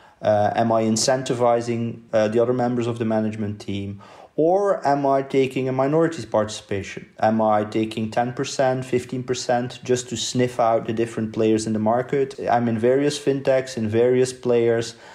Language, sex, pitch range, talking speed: English, male, 110-125 Hz, 160 wpm